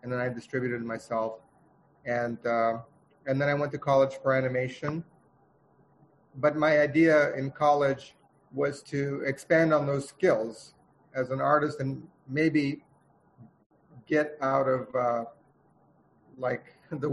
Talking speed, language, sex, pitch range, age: 130 wpm, English, male, 125-150 Hz, 30-49